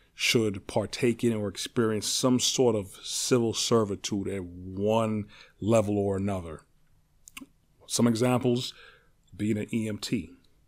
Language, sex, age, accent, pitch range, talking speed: English, male, 30-49, American, 95-115 Hz, 110 wpm